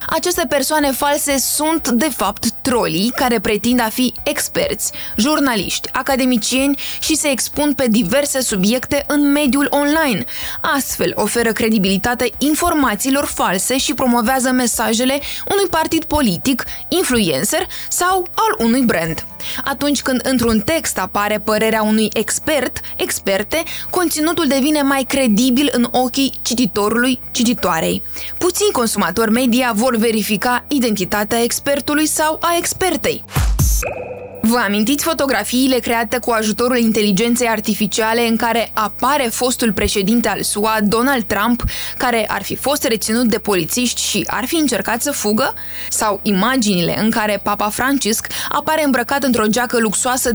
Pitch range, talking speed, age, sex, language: 220-285 Hz, 130 wpm, 20-39, female, Romanian